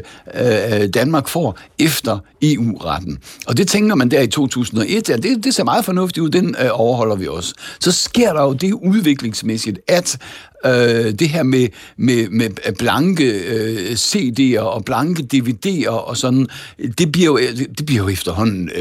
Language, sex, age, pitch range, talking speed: Danish, male, 60-79, 110-150 Hz, 165 wpm